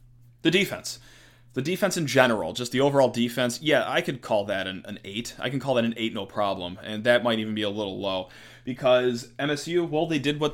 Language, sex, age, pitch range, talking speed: English, male, 20-39, 115-135 Hz, 230 wpm